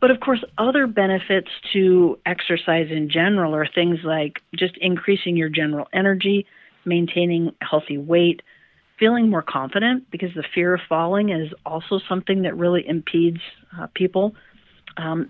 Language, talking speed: English, 150 wpm